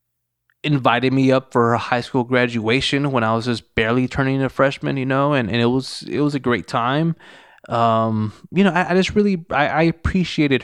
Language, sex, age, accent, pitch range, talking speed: English, male, 20-39, American, 120-150 Hz, 210 wpm